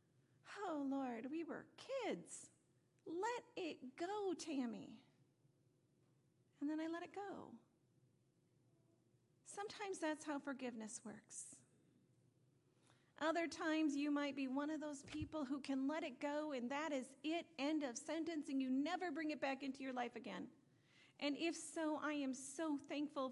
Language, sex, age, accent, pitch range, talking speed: English, female, 40-59, American, 240-305 Hz, 150 wpm